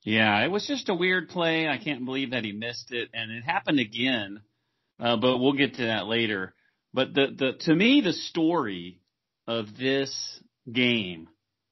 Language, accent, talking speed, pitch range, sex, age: English, American, 180 wpm, 110-135 Hz, male, 40-59